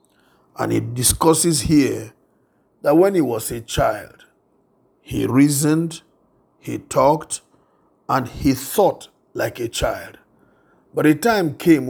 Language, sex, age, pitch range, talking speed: English, male, 50-69, 125-160 Hz, 120 wpm